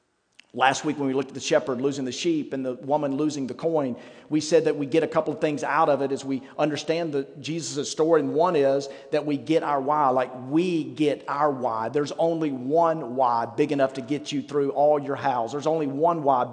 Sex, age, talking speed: male, 40-59, 230 wpm